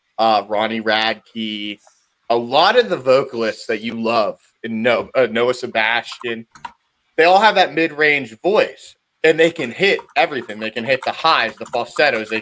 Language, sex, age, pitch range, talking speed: English, male, 30-49, 115-165 Hz, 170 wpm